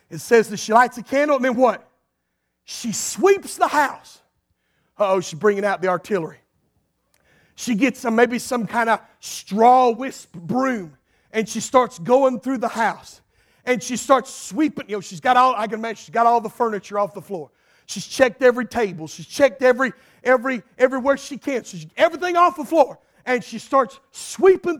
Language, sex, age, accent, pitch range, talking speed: English, male, 50-69, American, 215-300 Hz, 190 wpm